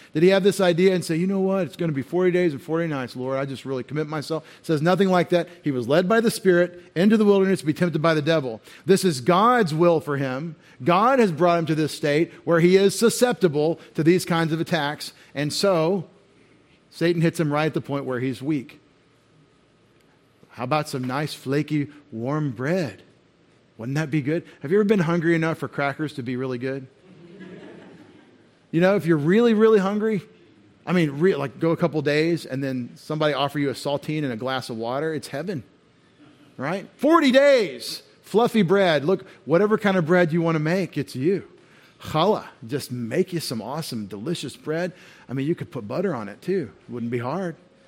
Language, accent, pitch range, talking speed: English, American, 140-180 Hz, 210 wpm